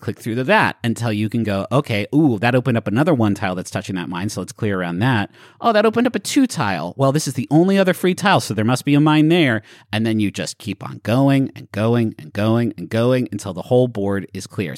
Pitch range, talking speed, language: 110-155 Hz, 270 wpm, English